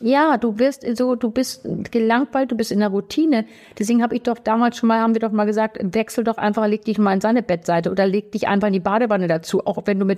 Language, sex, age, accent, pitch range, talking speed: German, female, 50-69, German, 190-230 Hz, 265 wpm